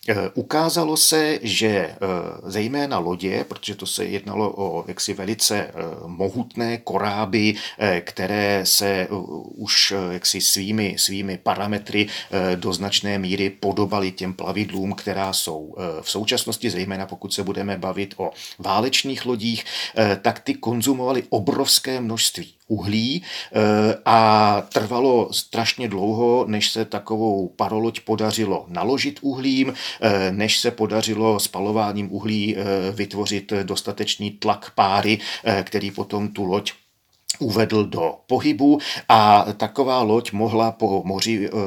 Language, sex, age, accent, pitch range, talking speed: Czech, male, 40-59, native, 100-115 Hz, 110 wpm